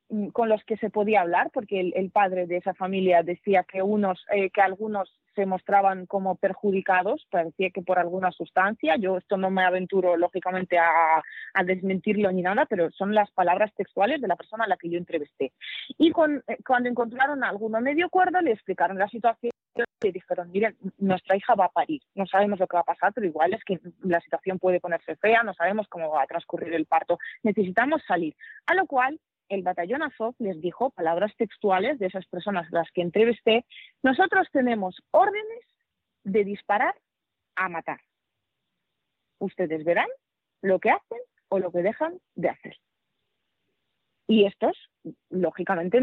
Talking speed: 180 wpm